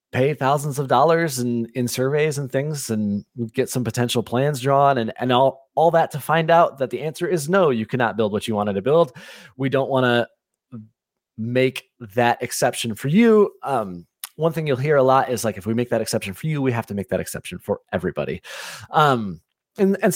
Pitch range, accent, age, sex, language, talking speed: 115-160 Hz, American, 30-49, male, English, 215 wpm